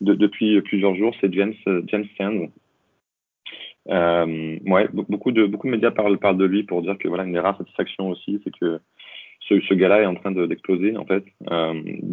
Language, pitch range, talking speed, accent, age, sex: French, 90-105 Hz, 205 wpm, French, 30-49, male